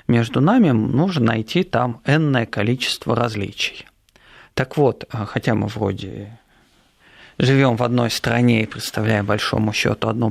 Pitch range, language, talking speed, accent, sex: 110-140 Hz, Russian, 130 wpm, native, male